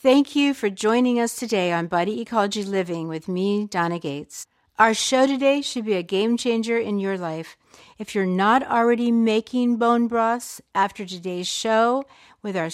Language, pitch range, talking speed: English, 185-230 Hz, 175 wpm